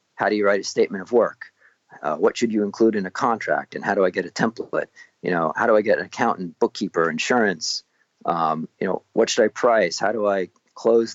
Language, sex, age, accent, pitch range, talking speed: English, male, 40-59, American, 105-125 Hz, 235 wpm